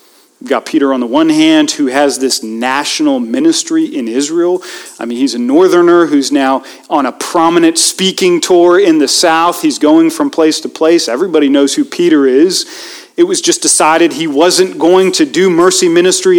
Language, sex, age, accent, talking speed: English, male, 40-59, American, 185 wpm